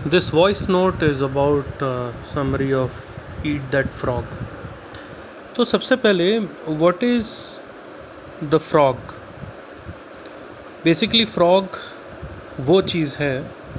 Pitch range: 135-180 Hz